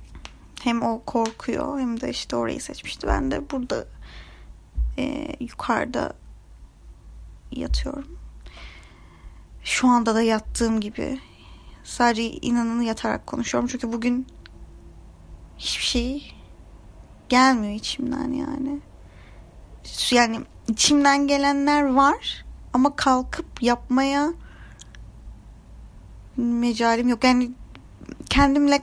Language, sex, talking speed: Turkish, female, 85 wpm